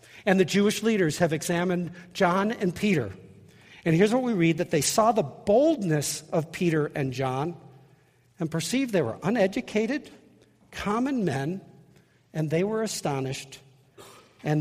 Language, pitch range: English, 140-185 Hz